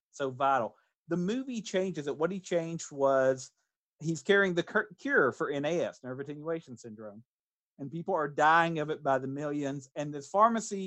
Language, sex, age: English, male, 50-69